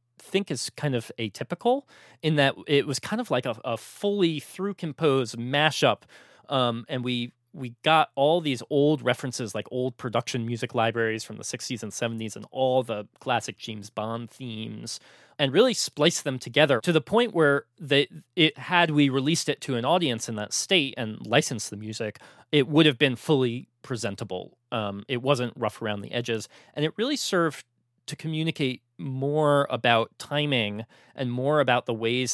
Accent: American